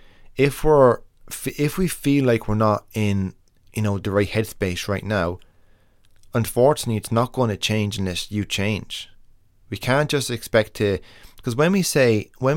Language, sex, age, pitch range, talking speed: English, male, 20-39, 95-120 Hz, 165 wpm